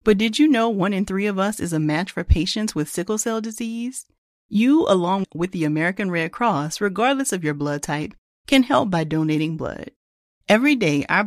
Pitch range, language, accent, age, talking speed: 155-230 Hz, English, American, 40-59, 200 wpm